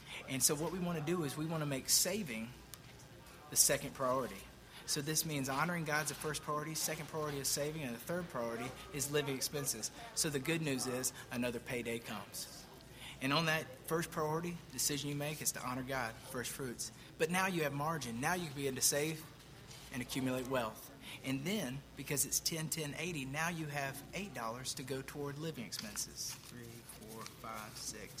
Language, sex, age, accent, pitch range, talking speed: English, male, 40-59, American, 130-155 Hz, 200 wpm